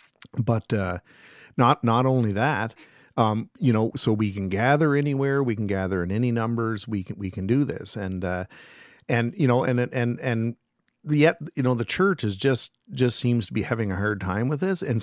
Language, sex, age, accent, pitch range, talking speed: English, male, 50-69, American, 110-170 Hz, 210 wpm